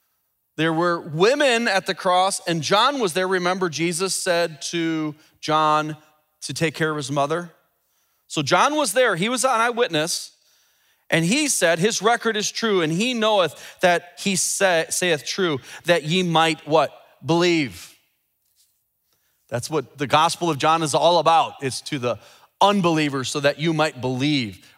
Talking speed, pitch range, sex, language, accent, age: 160 wpm, 155-205 Hz, male, English, American, 30-49